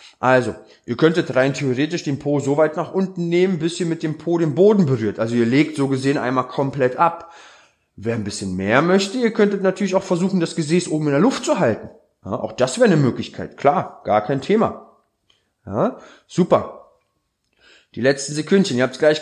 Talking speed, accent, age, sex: 195 wpm, German, 20-39, male